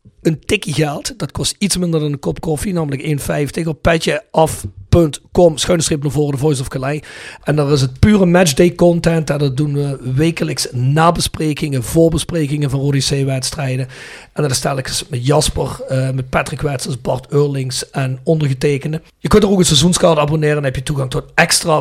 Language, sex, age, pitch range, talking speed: Dutch, male, 40-59, 135-165 Hz, 175 wpm